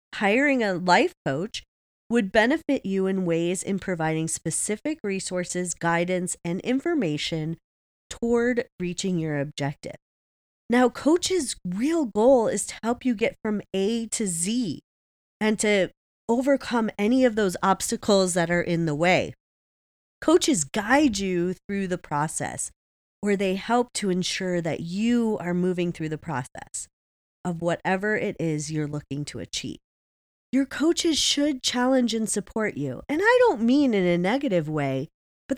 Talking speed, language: 145 wpm, English